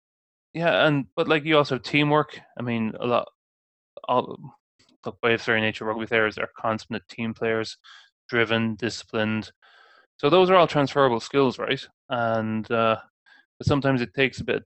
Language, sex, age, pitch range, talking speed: English, male, 20-39, 110-125 Hz, 170 wpm